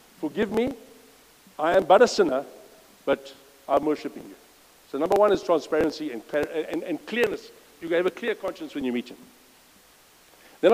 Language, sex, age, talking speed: English, male, 60-79, 180 wpm